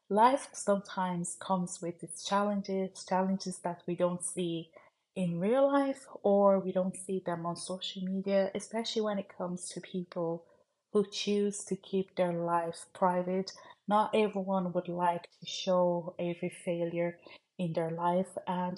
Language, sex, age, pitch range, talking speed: English, female, 30-49, 175-200 Hz, 150 wpm